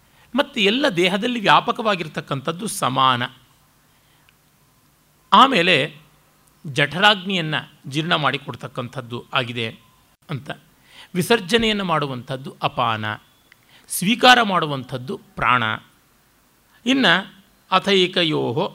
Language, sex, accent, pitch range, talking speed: Kannada, male, native, 135-190 Hz, 60 wpm